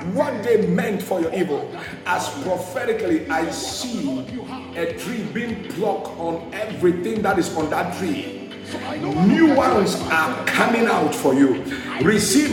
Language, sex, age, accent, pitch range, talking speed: English, male, 50-69, Nigerian, 210-310 Hz, 140 wpm